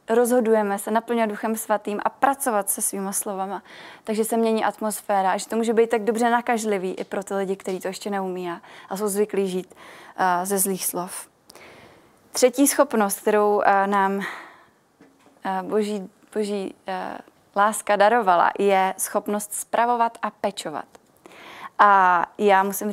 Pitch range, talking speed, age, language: 190-215 Hz, 140 wpm, 20-39, Czech